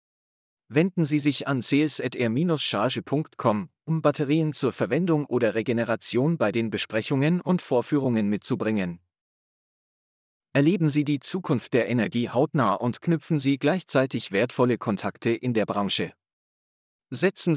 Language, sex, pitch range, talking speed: English, male, 115-150 Hz, 115 wpm